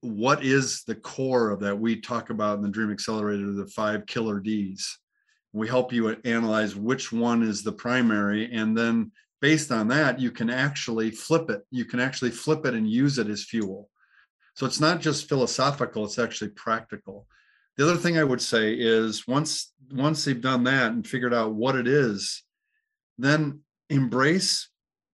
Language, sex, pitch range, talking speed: English, male, 110-140 Hz, 175 wpm